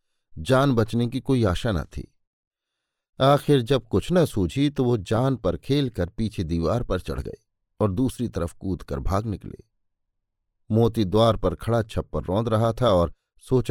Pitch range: 90-125 Hz